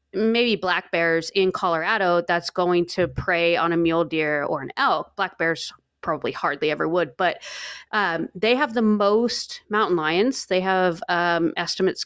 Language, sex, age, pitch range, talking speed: English, female, 30-49, 170-205 Hz, 170 wpm